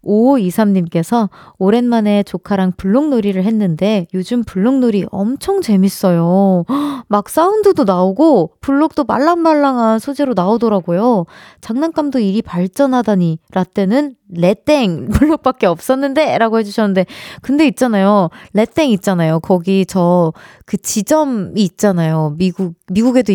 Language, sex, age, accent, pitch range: Korean, female, 20-39, native, 185-265 Hz